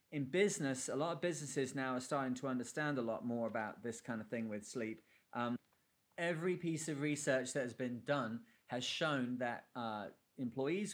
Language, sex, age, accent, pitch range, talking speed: English, male, 30-49, British, 120-145 Hz, 190 wpm